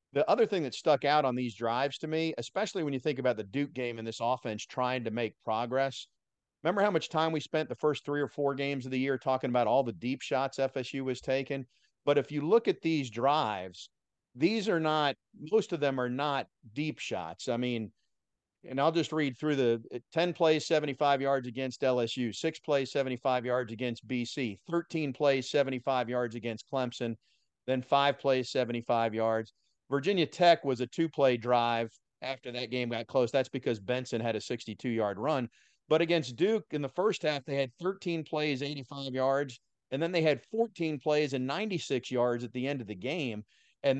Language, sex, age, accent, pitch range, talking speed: English, male, 50-69, American, 120-150 Hz, 200 wpm